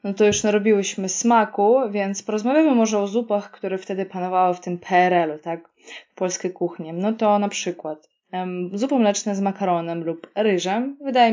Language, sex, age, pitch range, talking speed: Polish, female, 20-39, 175-210 Hz, 160 wpm